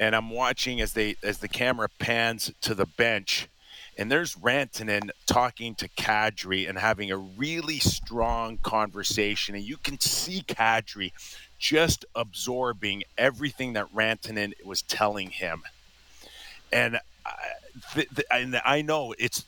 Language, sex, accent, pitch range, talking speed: English, male, American, 105-125 Hz, 125 wpm